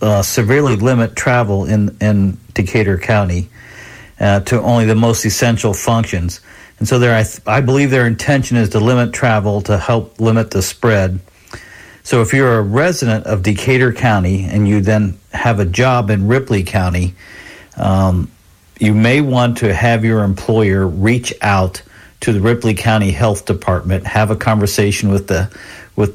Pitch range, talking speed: 100-115 Hz, 165 wpm